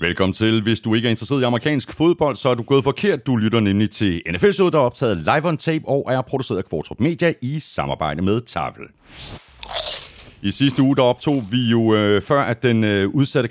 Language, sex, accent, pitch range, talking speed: Danish, male, native, 95-135 Hz, 210 wpm